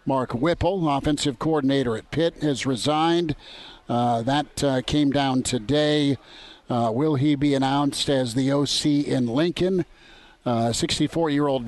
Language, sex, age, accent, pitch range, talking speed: English, male, 50-69, American, 130-145 Hz, 150 wpm